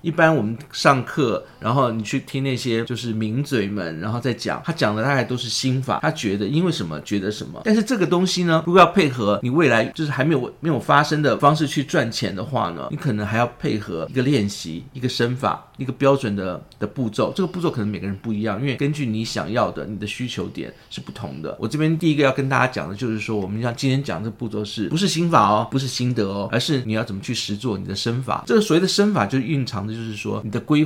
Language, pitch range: Chinese, 105-140 Hz